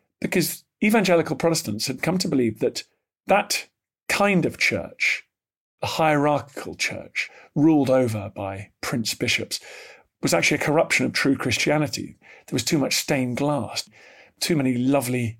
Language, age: English, 40-59